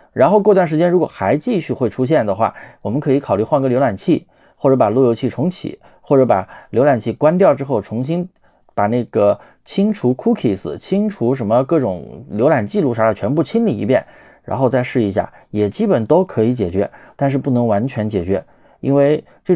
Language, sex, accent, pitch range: Chinese, male, native, 110-145 Hz